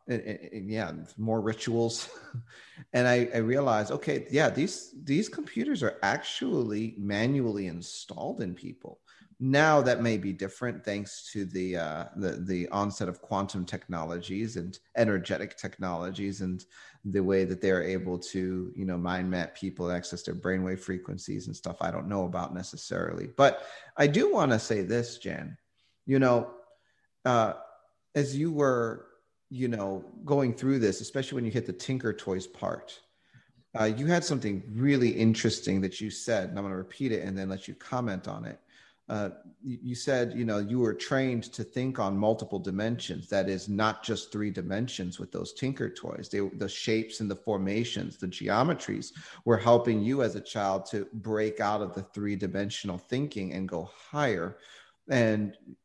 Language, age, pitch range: English, 30-49, 95-120 Hz